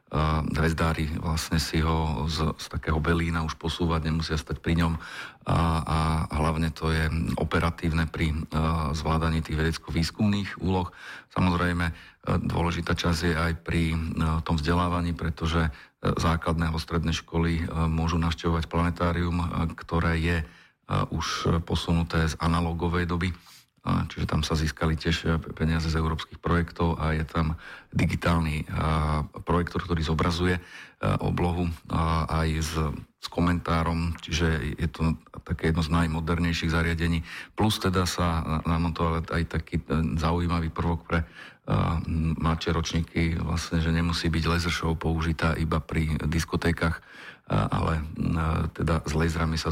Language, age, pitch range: Slovak, 50-69, 80-85 Hz